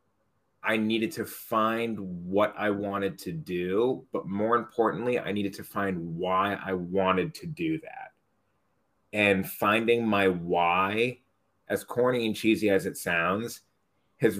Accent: American